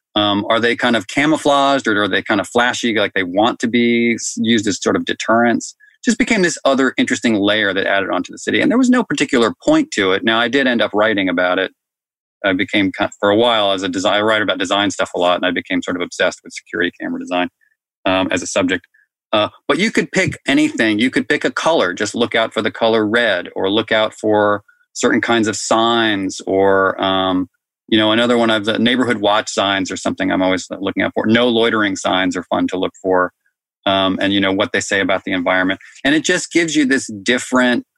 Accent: American